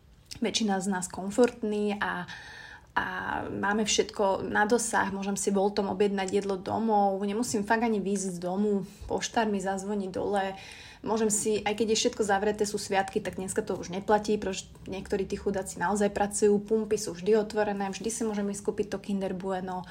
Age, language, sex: 30-49, Slovak, female